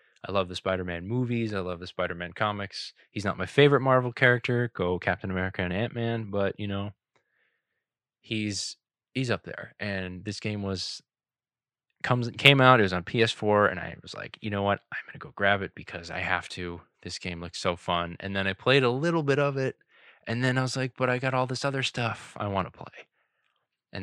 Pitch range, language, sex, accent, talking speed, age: 90-115 Hz, English, male, American, 215 wpm, 20-39